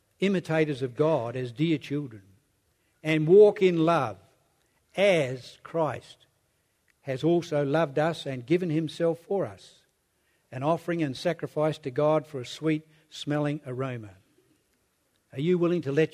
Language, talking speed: English, 140 wpm